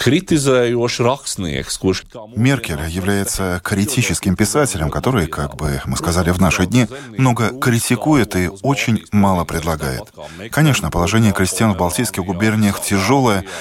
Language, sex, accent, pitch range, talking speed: Russian, male, native, 85-115 Hz, 110 wpm